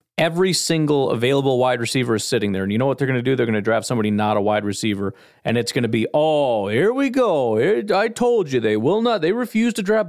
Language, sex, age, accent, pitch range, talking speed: English, male, 40-59, American, 110-150 Hz, 260 wpm